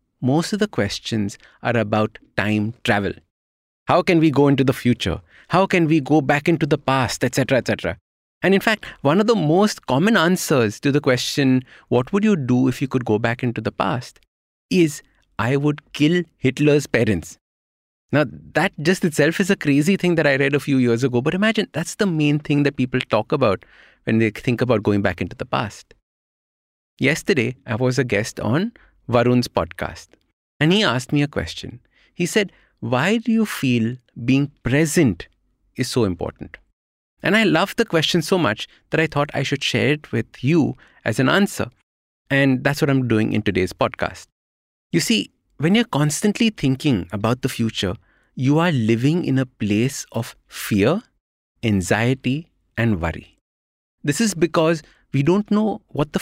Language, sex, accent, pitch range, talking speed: English, male, Indian, 110-160 Hz, 180 wpm